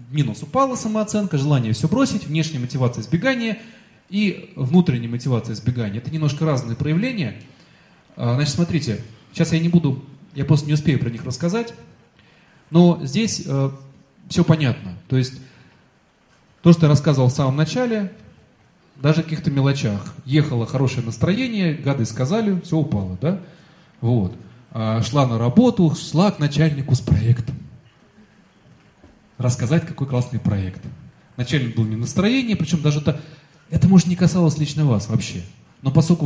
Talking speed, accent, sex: 140 wpm, native, male